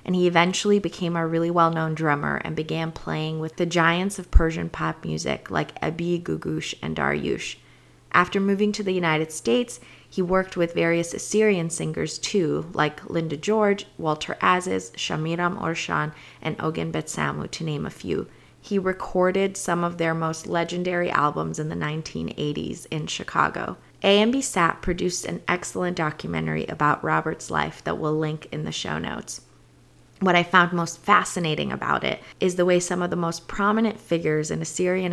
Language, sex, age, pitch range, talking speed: English, female, 30-49, 150-180 Hz, 165 wpm